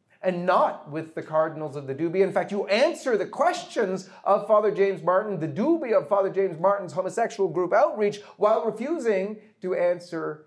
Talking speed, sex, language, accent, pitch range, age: 180 wpm, male, English, American, 140-205 Hz, 40-59